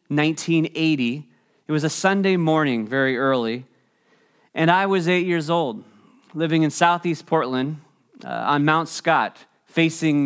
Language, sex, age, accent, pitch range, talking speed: English, male, 30-49, American, 140-175 Hz, 135 wpm